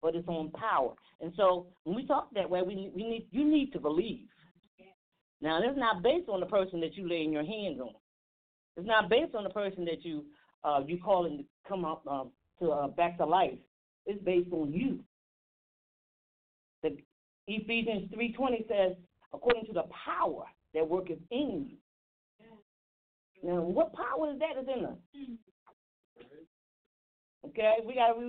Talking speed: 165 wpm